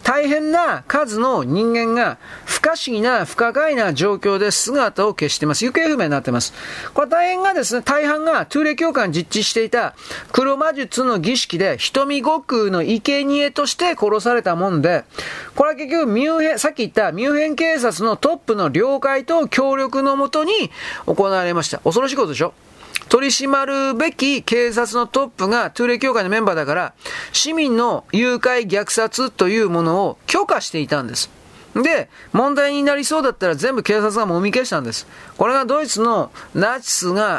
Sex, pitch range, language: male, 180-275 Hz, Japanese